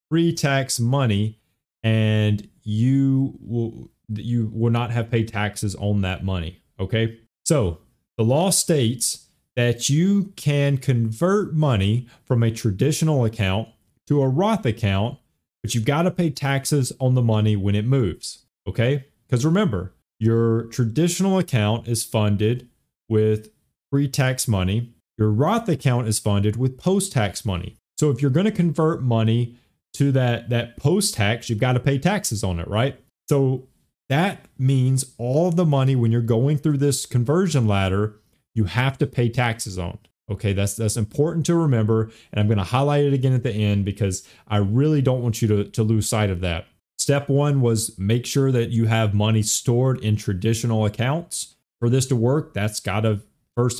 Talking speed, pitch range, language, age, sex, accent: 170 wpm, 110-140 Hz, English, 30-49, male, American